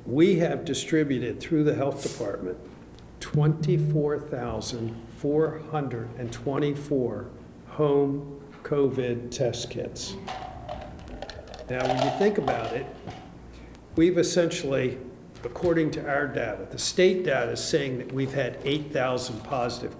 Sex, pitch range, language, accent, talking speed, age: male, 120-150 Hz, English, American, 100 wpm, 50-69